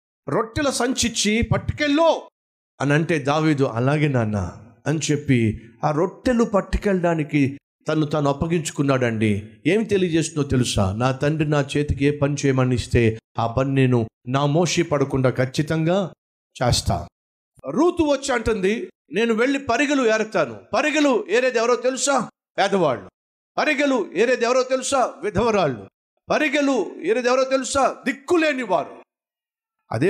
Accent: native